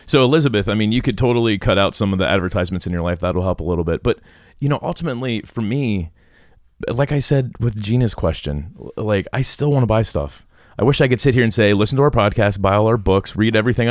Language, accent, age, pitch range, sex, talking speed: English, American, 30-49, 95-125 Hz, male, 250 wpm